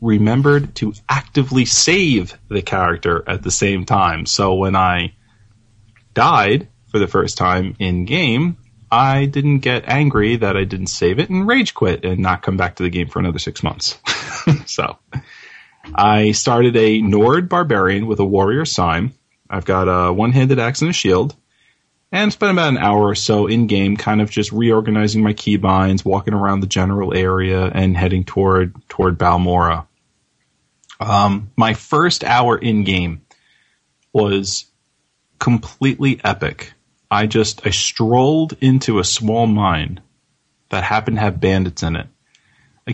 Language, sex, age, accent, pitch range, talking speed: English, male, 30-49, American, 95-120 Hz, 155 wpm